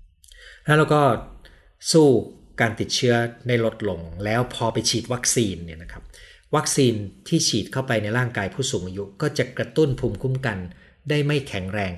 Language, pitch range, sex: Thai, 95-125 Hz, male